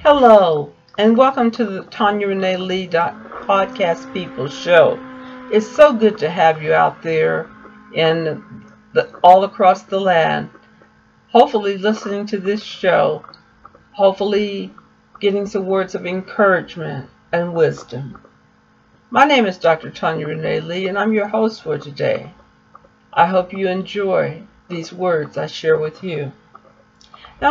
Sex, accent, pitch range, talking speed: female, American, 170-220 Hz, 135 wpm